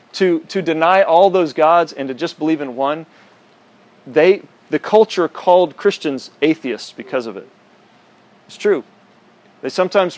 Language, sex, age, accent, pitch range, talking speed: English, male, 40-59, American, 125-160 Hz, 145 wpm